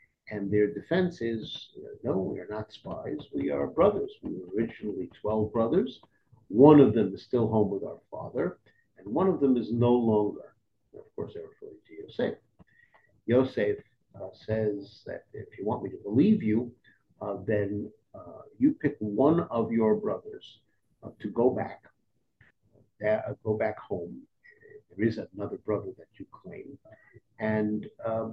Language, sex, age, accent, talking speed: English, male, 50-69, American, 160 wpm